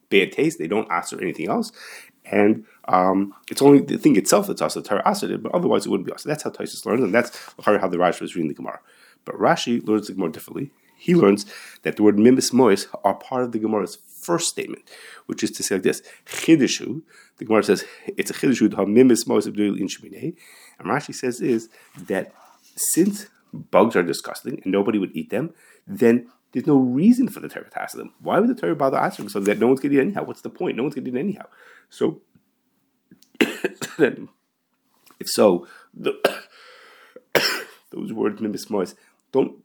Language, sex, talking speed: English, male, 190 wpm